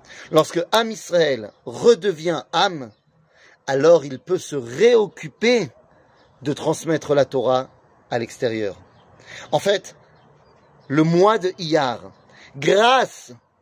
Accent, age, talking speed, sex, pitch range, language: French, 30-49, 100 wpm, male, 135-195 Hz, French